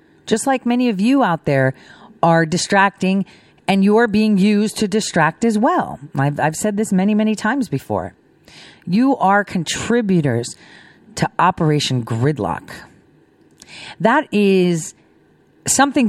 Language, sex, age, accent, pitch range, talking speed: English, female, 40-59, American, 150-215 Hz, 125 wpm